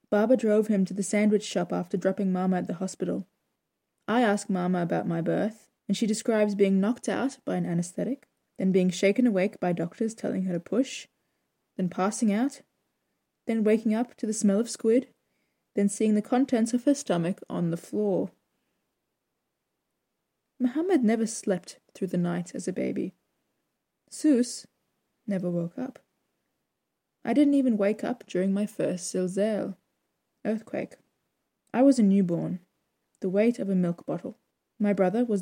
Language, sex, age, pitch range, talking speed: English, female, 20-39, 185-235 Hz, 160 wpm